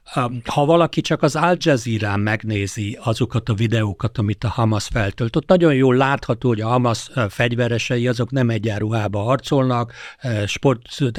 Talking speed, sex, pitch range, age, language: 145 wpm, male, 105-125 Hz, 60-79, Hungarian